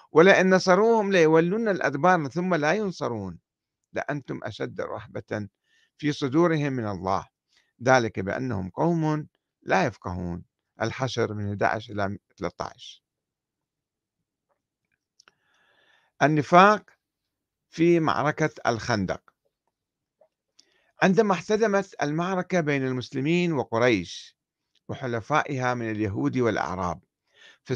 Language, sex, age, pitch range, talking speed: Arabic, male, 50-69, 115-160 Hz, 85 wpm